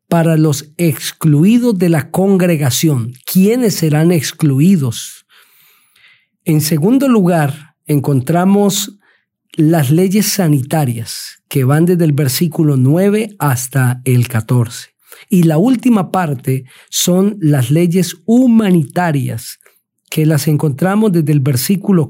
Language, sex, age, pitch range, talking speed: Spanish, male, 50-69, 140-185 Hz, 105 wpm